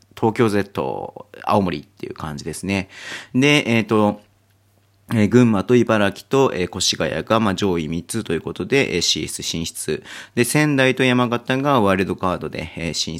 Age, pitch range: 40-59, 90-115 Hz